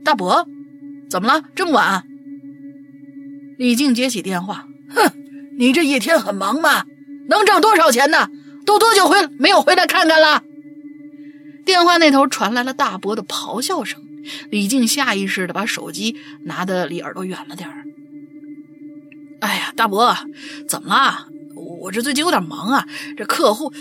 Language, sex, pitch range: Chinese, female, 275-315 Hz